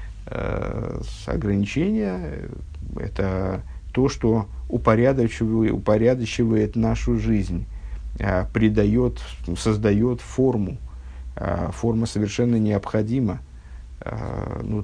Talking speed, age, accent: 75 wpm, 50-69, native